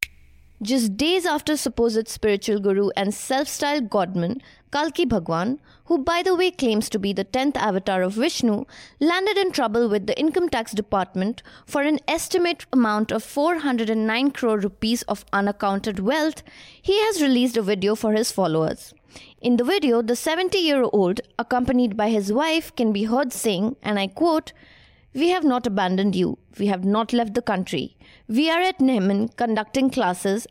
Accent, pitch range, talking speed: Indian, 210-290 Hz, 165 wpm